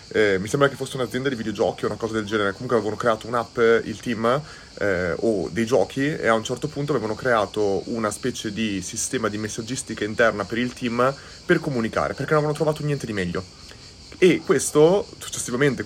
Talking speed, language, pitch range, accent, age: 195 wpm, Italian, 110-130 Hz, native, 30-49